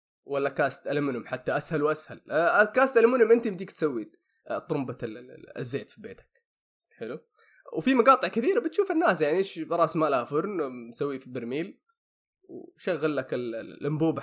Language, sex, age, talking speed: Arabic, male, 20-39, 135 wpm